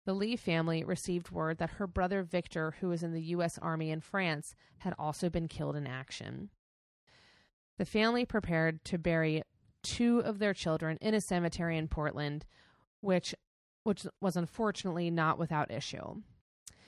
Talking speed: 155 wpm